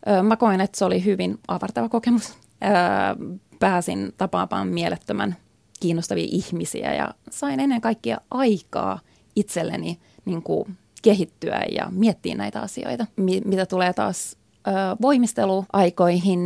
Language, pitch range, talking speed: Finnish, 170-210 Hz, 105 wpm